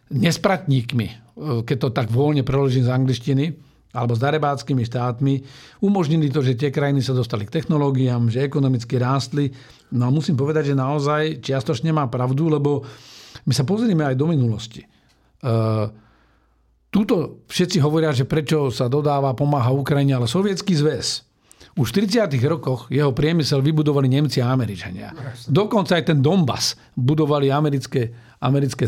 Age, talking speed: 50-69, 145 wpm